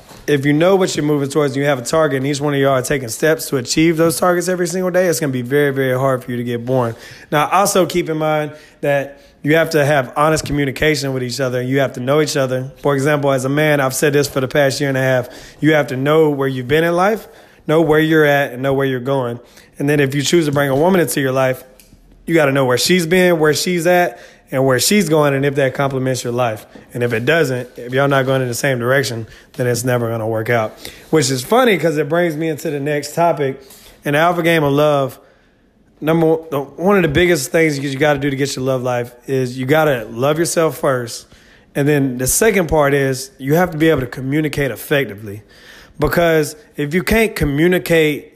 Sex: male